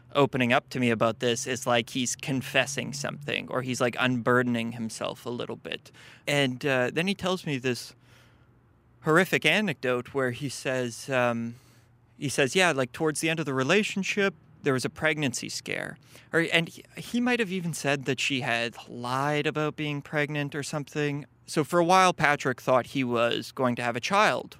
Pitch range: 120-145 Hz